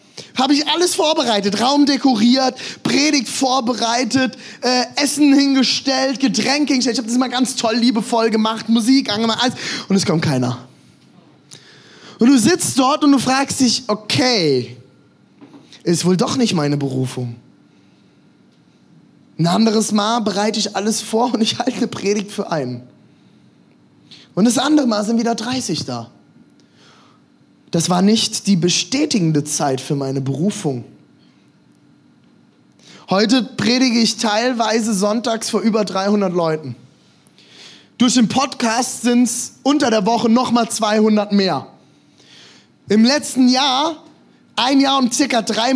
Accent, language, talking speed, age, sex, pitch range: German, German, 135 wpm, 20-39, male, 205-255 Hz